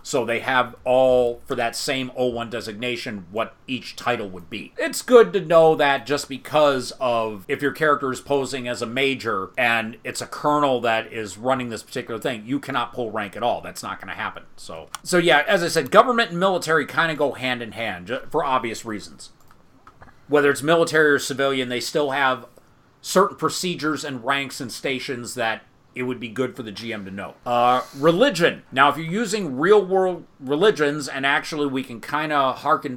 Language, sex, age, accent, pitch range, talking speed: English, male, 30-49, American, 120-145 Hz, 195 wpm